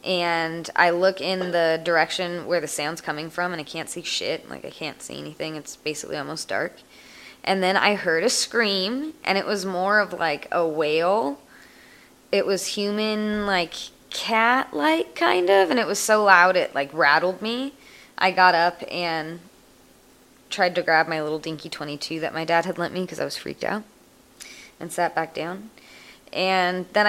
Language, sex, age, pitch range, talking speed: English, female, 20-39, 160-195 Hz, 185 wpm